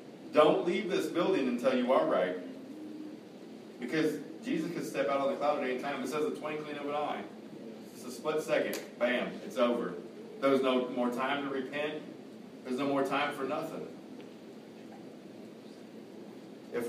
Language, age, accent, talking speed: English, 40-59, American, 165 wpm